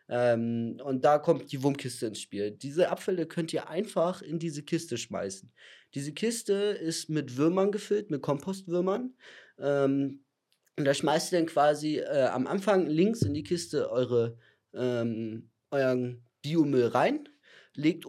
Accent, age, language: German, 30-49, German